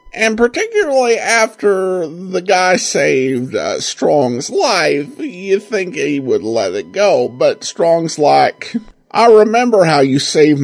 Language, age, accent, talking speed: English, 50-69, American, 135 wpm